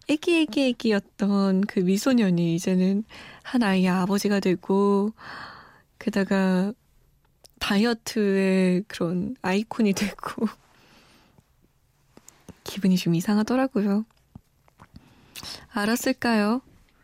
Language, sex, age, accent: Korean, female, 20-39, native